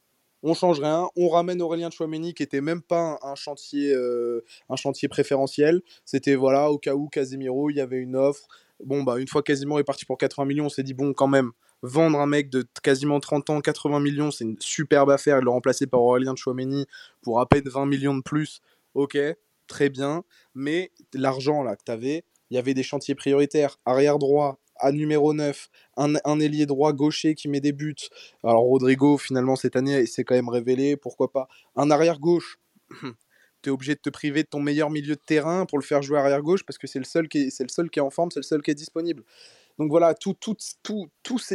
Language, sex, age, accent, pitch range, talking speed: French, male, 20-39, French, 135-160 Hz, 230 wpm